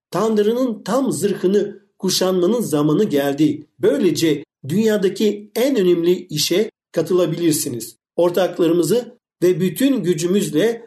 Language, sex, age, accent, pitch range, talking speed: Turkish, male, 50-69, native, 170-220 Hz, 90 wpm